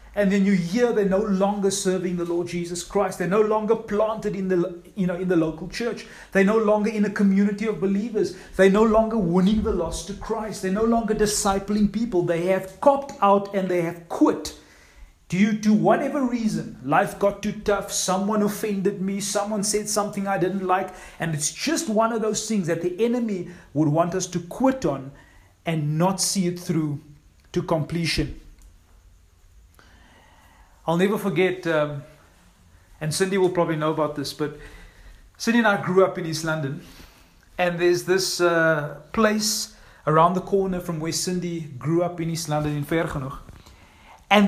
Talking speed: 180 wpm